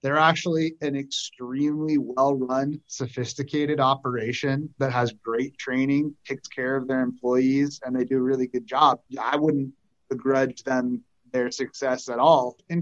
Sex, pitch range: male, 125-150 Hz